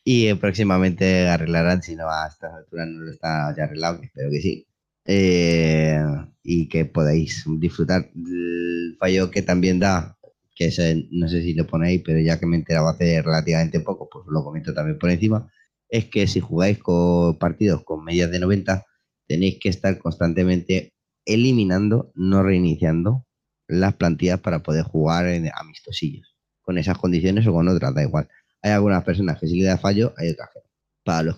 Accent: Spanish